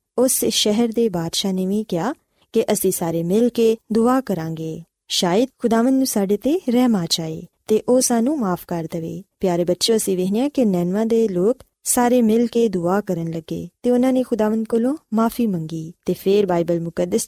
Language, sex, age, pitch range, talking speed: Punjabi, female, 20-39, 185-245 Hz, 180 wpm